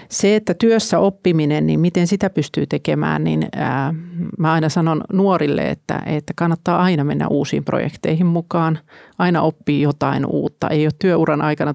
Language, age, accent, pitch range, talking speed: Finnish, 40-59, native, 150-190 Hz, 150 wpm